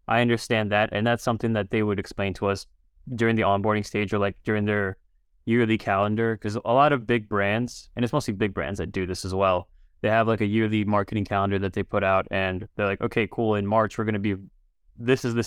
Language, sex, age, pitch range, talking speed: English, male, 20-39, 100-120 Hz, 245 wpm